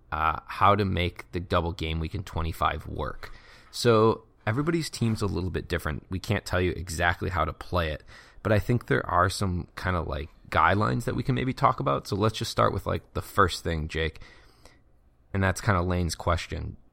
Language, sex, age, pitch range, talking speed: English, male, 20-39, 85-105 Hz, 210 wpm